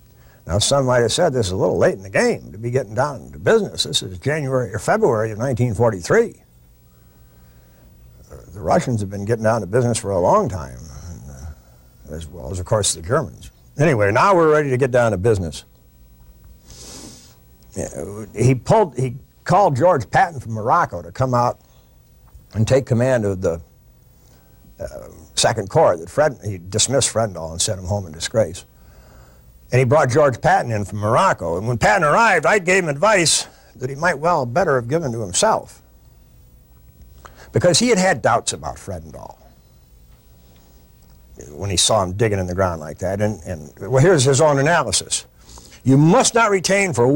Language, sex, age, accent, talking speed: English, male, 60-79, American, 180 wpm